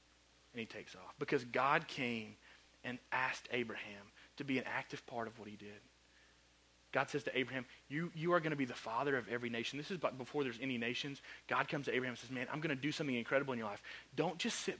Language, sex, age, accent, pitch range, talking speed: English, male, 30-49, American, 105-140 Hz, 240 wpm